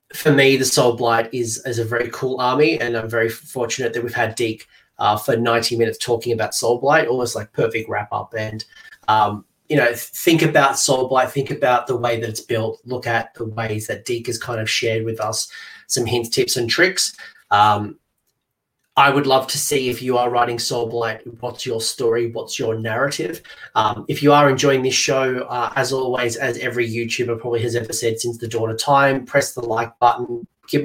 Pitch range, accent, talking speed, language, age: 115-125 Hz, Australian, 210 wpm, English, 30-49